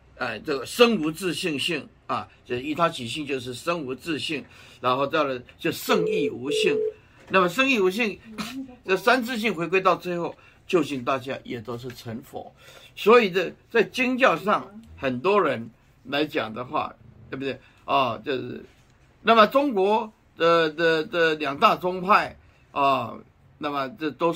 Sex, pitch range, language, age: male, 140-210 Hz, Chinese, 50-69